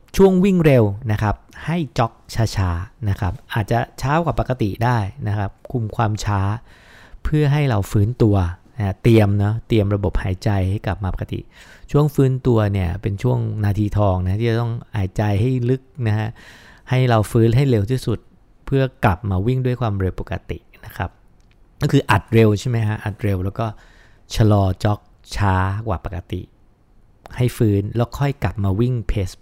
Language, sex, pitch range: English, male, 95-120 Hz